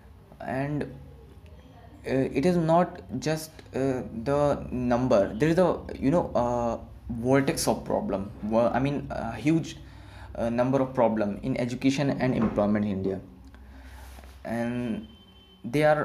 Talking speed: 135 wpm